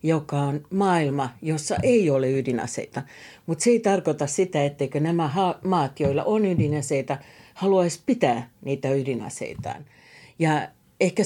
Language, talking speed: Finnish, 130 wpm